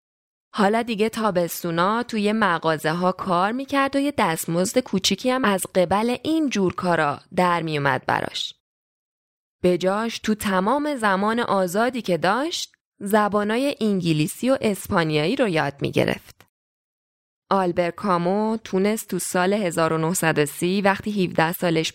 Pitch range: 180-235 Hz